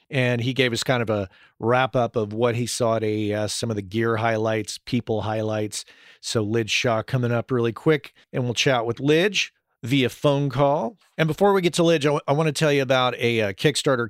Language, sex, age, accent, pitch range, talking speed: English, male, 40-59, American, 105-130 Hz, 230 wpm